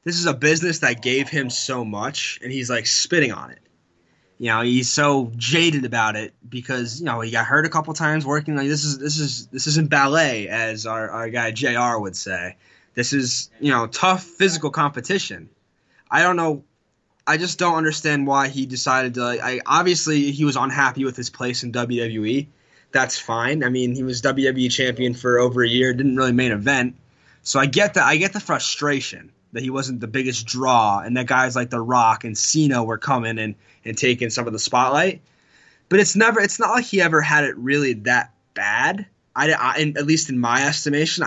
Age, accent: 20-39, American